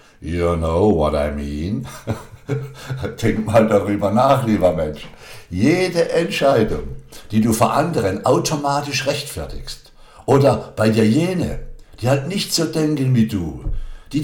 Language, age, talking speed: German, 60-79, 130 wpm